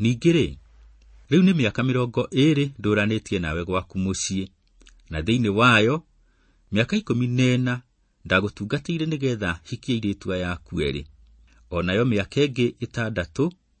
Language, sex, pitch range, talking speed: English, male, 90-130 Hz, 115 wpm